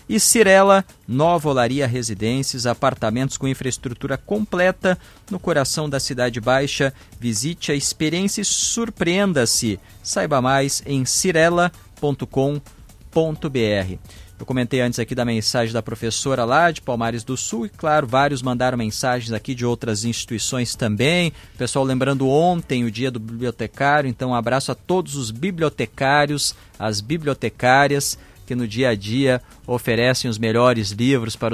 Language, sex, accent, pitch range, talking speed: Portuguese, male, Brazilian, 115-145 Hz, 135 wpm